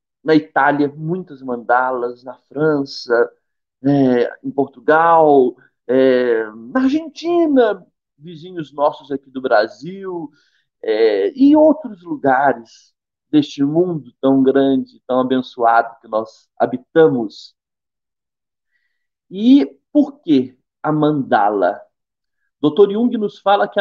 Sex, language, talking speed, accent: male, Portuguese, 100 wpm, Brazilian